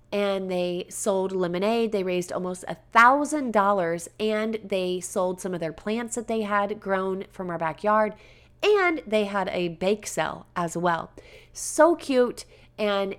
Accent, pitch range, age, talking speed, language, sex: American, 175-215 Hz, 30-49, 150 wpm, English, female